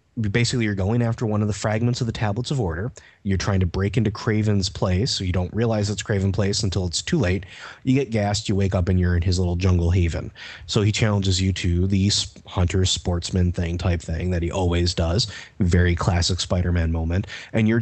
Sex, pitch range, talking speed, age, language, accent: male, 95-115 Hz, 215 wpm, 30-49, English, American